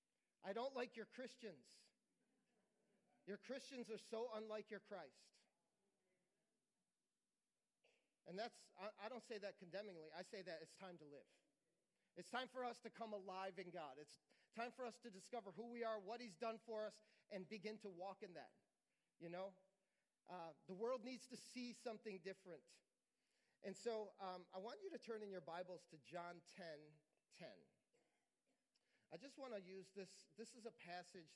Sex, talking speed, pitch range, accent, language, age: male, 175 wpm, 180-225 Hz, American, English, 40-59